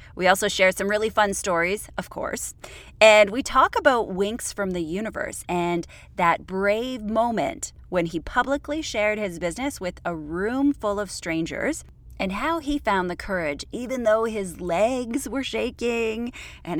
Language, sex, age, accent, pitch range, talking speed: English, female, 30-49, American, 170-235 Hz, 165 wpm